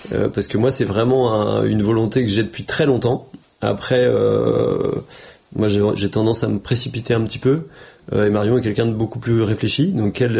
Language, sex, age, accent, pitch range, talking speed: French, male, 30-49, French, 105-130 Hz, 200 wpm